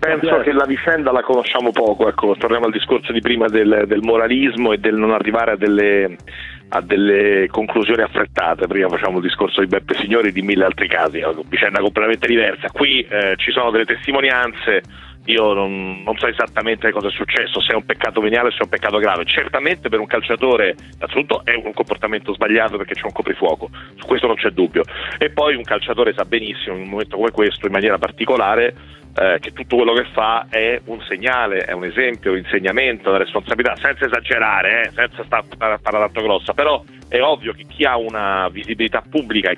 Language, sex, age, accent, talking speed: Italian, male, 40-59, native, 195 wpm